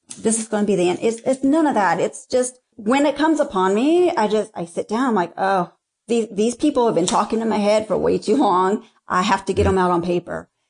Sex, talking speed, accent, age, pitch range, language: female, 265 wpm, American, 40-59, 195-270 Hz, English